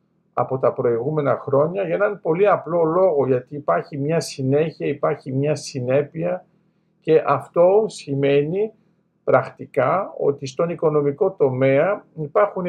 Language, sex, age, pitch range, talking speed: Greek, male, 50-69, 140-195 Hz, 120 wpm